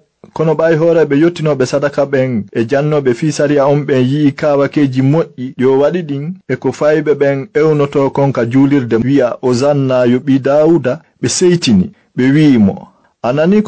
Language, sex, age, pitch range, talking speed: English, male, 50-69, 130-160 Hz, 145 wpm